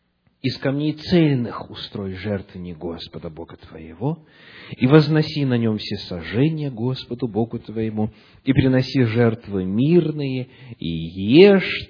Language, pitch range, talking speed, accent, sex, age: Russian, 105-160 Hz, 120 wpm, native, male, 40-59